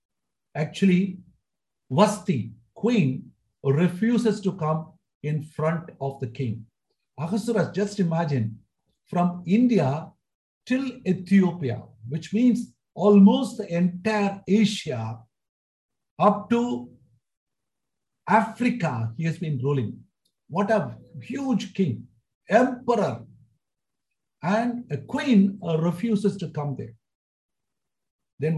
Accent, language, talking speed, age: Indian, English, 90 wpm, 60-79